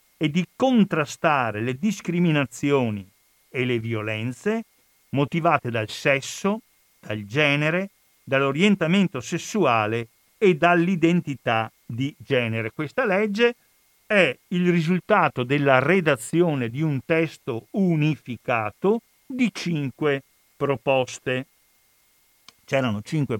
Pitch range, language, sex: 120-180 Hz, Italian, male